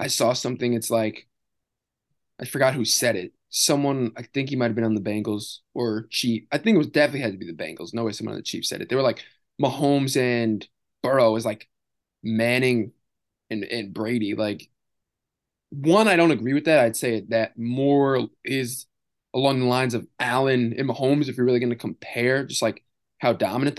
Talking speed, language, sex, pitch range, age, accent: 205 wpm, English, male, 115-140 Hz, 20-39, American